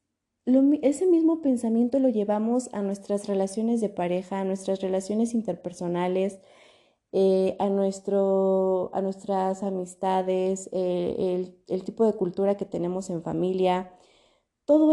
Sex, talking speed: female, 130 wpm